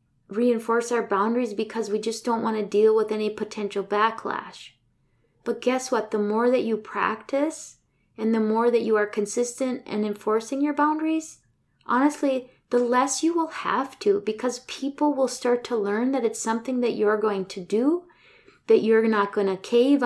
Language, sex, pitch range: English, female, 210-255 Hz